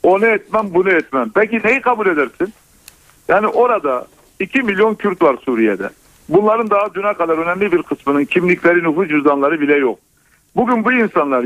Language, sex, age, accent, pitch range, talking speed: Turkish, male, 60-79, native, 165-215 Hz, 155 wpm